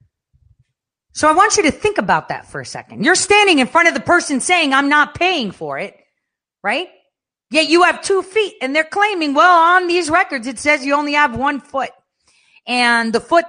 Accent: American